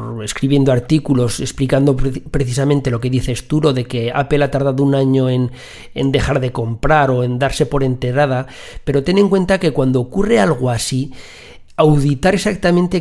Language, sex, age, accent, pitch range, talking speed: Spanish, male, 40-59, Spanish, 130-165 Hz, 165 wpm